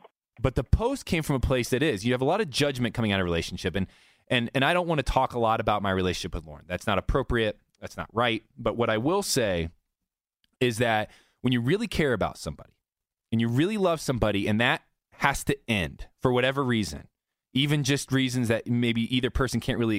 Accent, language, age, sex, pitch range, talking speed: American, English, 20-39, male, 95-125 Hz, 230 wpm